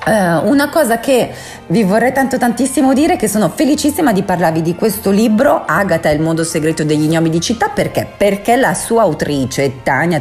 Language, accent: Italian, native